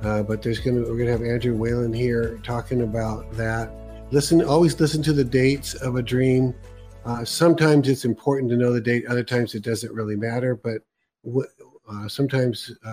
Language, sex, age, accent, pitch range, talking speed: English, male, 50-69, American, 110-130 Hz, 185 wpm